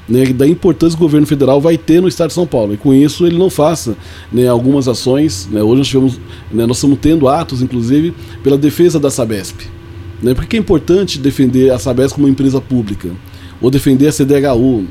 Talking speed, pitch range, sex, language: 205 wpm, 115-145 Hz, male, Portuguese